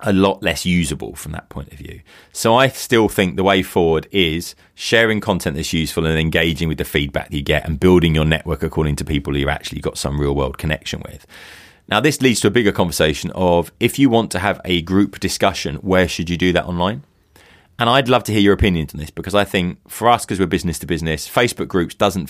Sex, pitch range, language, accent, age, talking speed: male, 80-100 Hz, English, British, 30-49, 235 wpm